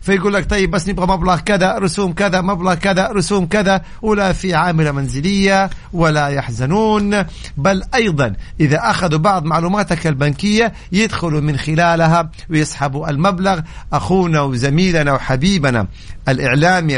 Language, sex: Arabic, male